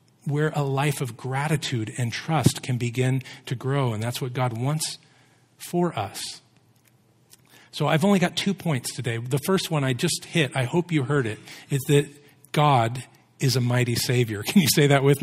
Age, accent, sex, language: 40-59, American, male, English